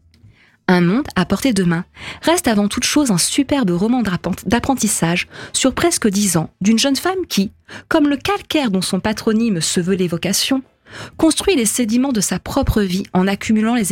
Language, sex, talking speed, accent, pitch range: French, female, 175 wpm, French, 175-250 Hz